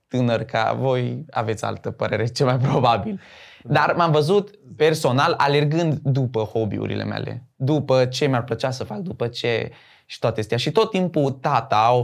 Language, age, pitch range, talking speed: Romanian, 20-39, 115-150 Hz, 165 wpm